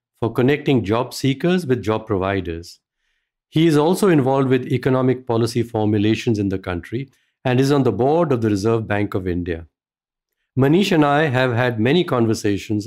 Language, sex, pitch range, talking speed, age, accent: English, male, 105-145 Hz, 170 wpm, 50-69, Indian